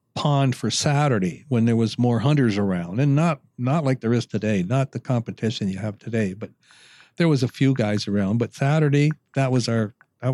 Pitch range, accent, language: 110-135 Hz, American, English